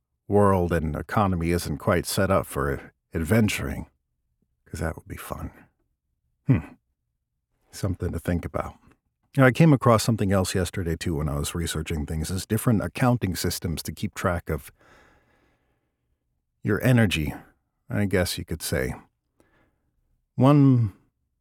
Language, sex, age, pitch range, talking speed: English, male, 50-69, 80-110 Hz, 135 wpm